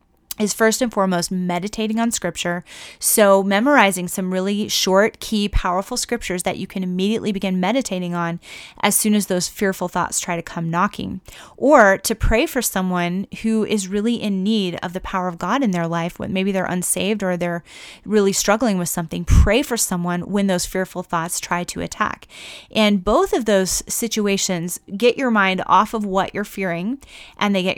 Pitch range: 180-220 Hz